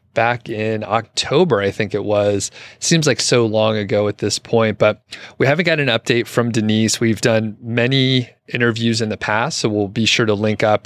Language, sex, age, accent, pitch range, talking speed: English, male, 30-49, American, 105-120 Hz, 205 wpm